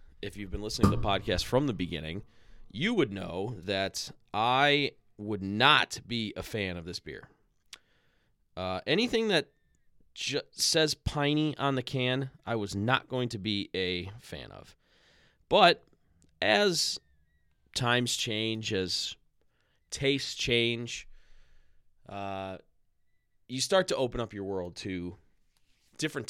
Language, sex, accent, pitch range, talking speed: English, male, American, 95-130 Hz, 130 wpm